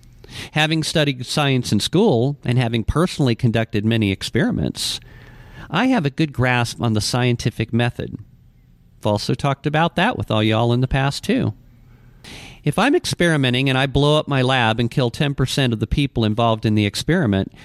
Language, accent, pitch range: English, American, 110-140 Hz